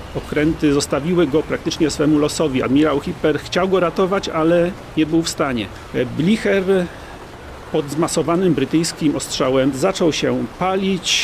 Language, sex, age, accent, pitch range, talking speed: Polish, male, 40-59, native, 135-165 Hz, 130 wpm